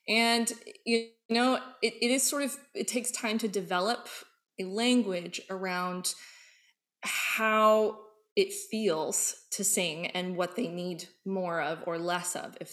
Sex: female